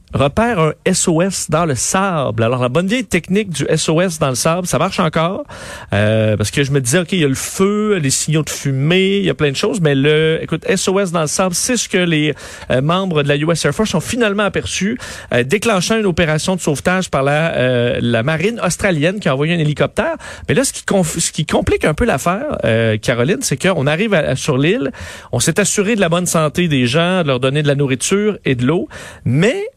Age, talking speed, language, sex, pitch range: 40-59, 225 wpm, French, male, 140-190 Hz